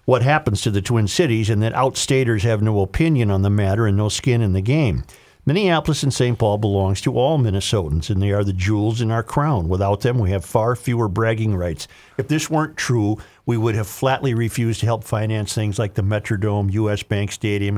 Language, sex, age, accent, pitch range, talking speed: English, male, 50-69, American, 105-125 Hz, 215 wpm